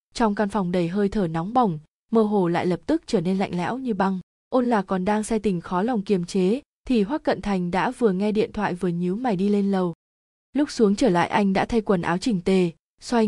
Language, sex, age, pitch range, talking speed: Vietnamese, female, 20-39, 185-225 Hz, 255 wpm